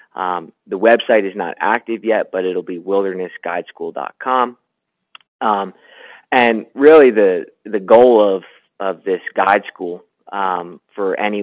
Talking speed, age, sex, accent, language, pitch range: 130 wpm, 20-39, male, American, English, 95-115 Hz